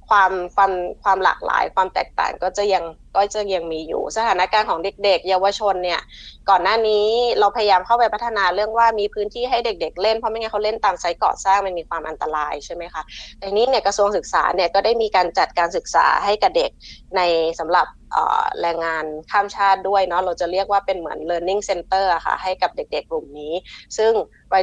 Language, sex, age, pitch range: Thai, female, 20-39, 175-225 Hz